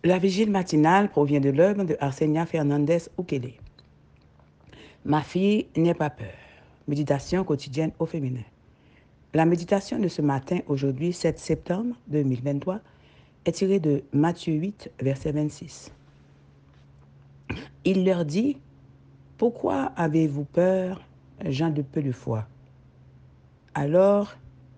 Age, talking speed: 60-79, 110 wpm